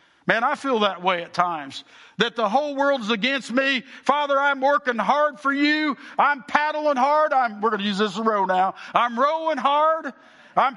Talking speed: 205 wpm